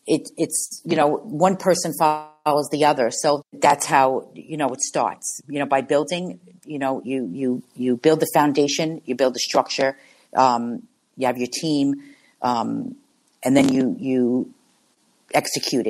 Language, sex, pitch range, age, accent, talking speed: English, female, 135-170 Hz, 50-69, American, 160 wpm